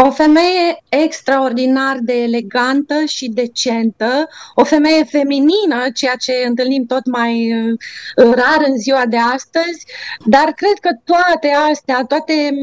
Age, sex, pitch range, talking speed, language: 20-39, female, 245-305 Hz, 125 wpm, Romanian